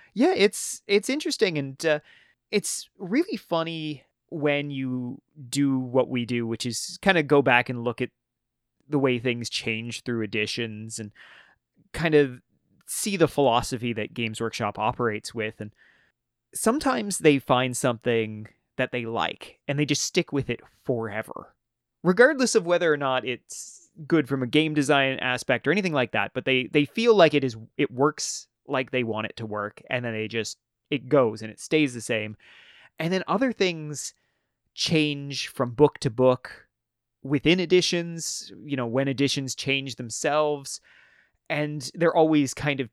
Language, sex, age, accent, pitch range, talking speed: English, male, 30-49, American, 115-155 Hz, 170 wpm